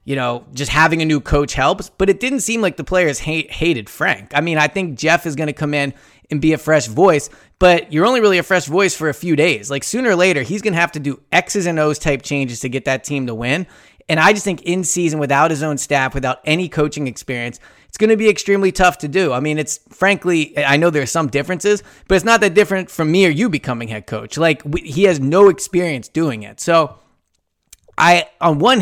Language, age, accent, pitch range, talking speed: English, 20-39, American, 140-175 Hz, 250 wpm